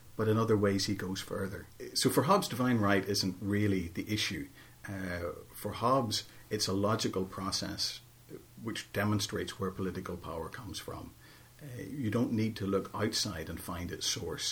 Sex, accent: male, Irish